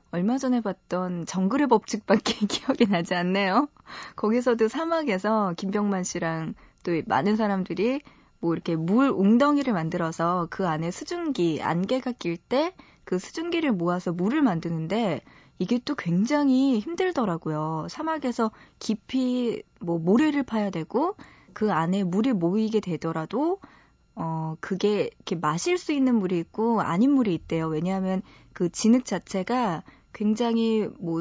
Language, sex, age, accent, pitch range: Korean, female, 20-39, native, 180-250 Hz